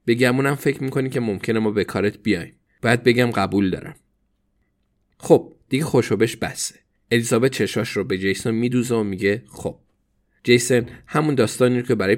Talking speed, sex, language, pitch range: 165 wpm, male, Persian, 100-135 Hz